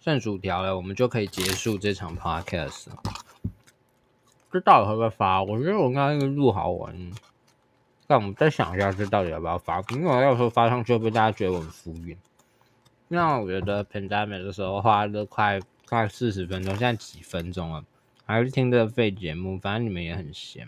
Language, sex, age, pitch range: Chinese, male, 20-39, 105-125 Hz